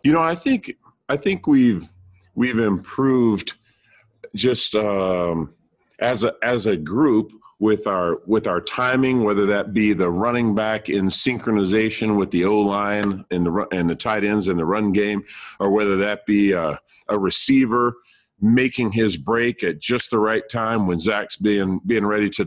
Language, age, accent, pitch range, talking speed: English, 40-59, American, 100-120 Hz, 170 wpm